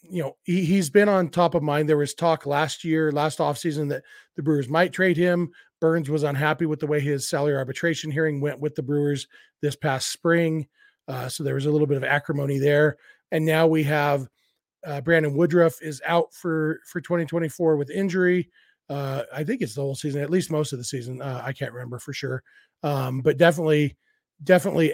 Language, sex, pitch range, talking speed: English, male, 150-180 Hz, 205 wpm